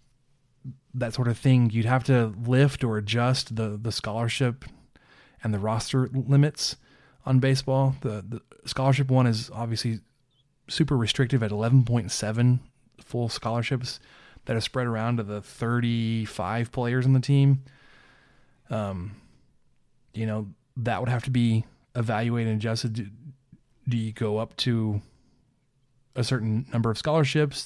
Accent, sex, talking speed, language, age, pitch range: American, male, 140 wpm, English, 20-39, 115-135 Hz